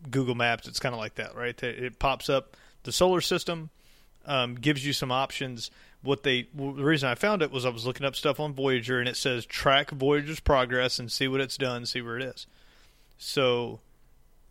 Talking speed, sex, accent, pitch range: 205 wpm, male, American, 120-145 Hz